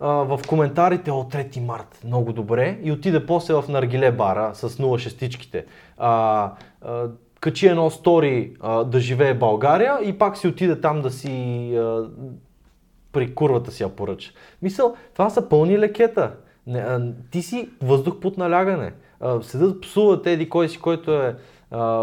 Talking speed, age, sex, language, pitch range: 155 wpm, 20-39, male, Bulgarian, 120-175 Hz